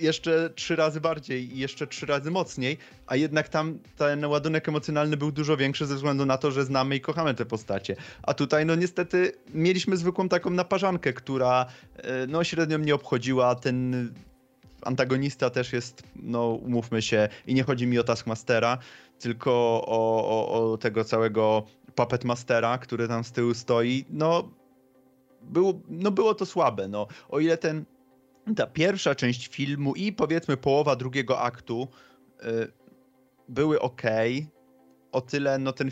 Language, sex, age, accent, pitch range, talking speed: Polish, male, 20-39, native, 120-150 Hz, 155 wpm